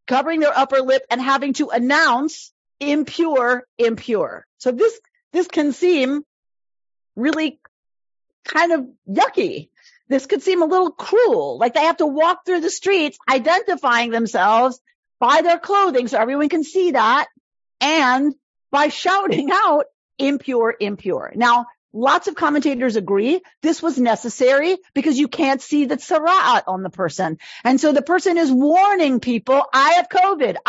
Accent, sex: American, female